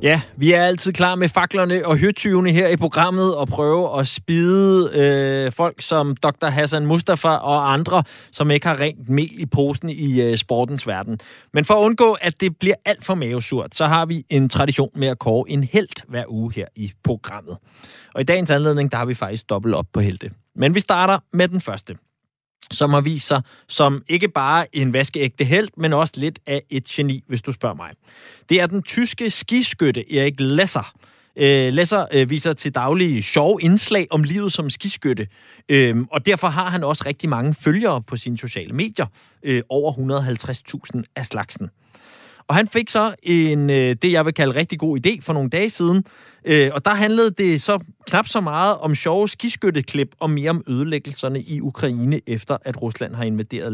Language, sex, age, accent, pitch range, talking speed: Danish, male, 30-49, native, 135-180 Hz, 185 wpm